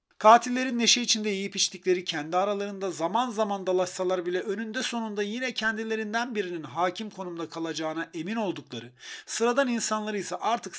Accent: native